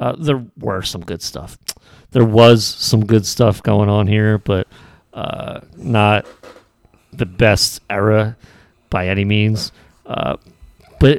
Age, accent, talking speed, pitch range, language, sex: 40-59, American, 135 wpm, 95-115 Hz, English, male